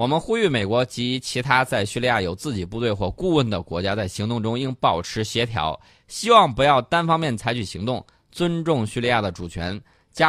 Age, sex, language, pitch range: 20-39, male, Chinese, 100-130 Hz